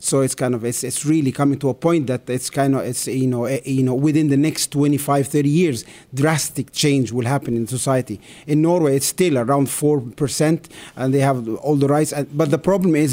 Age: 30-49